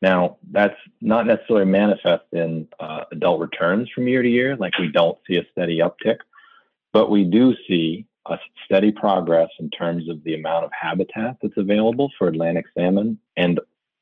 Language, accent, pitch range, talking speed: English, American, 85-105 Hz, 170 wpm